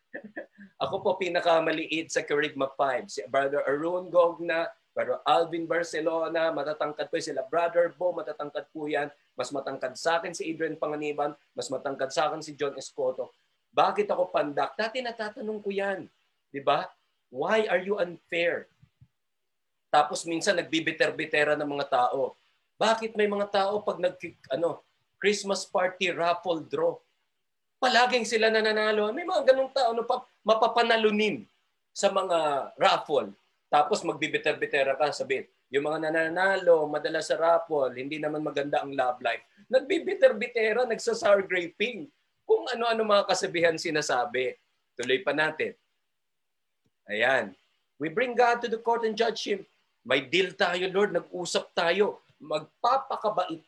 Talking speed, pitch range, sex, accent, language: 130 wpm, 155-220 Hz, male, native, Filipino